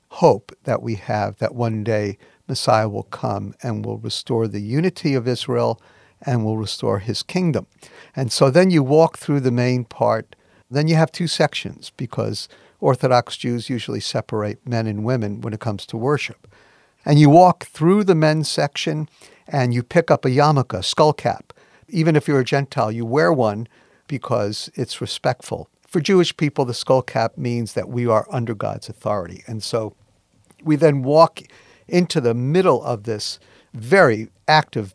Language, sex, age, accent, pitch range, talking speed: English, male, 50-69, American, 110-150 Hz, 170 wpm